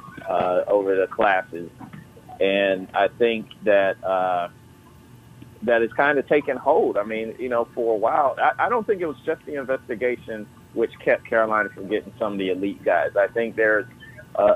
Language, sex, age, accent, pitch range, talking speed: English, male, 40-59, American, 100-130 Hz, 185 wpm